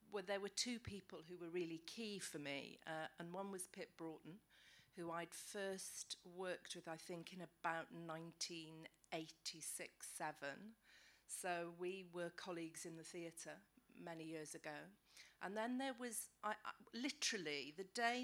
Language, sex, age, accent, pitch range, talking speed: English, female, 40-59, British, 165-205 Hz, 150 wpm